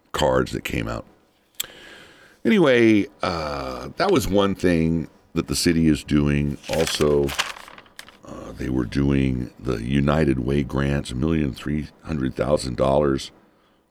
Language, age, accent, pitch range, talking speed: English, 60-79, American, 70-90 Hz, 110 wpm